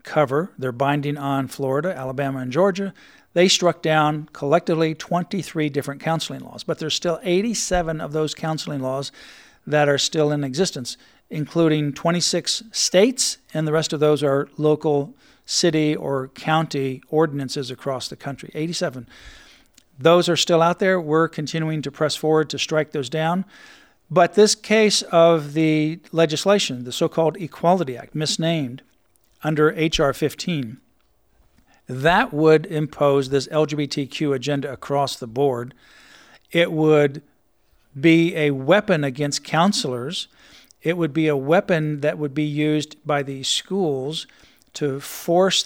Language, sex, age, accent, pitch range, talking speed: English, male, 50-69, American, 145-170 Hz, 140 wpm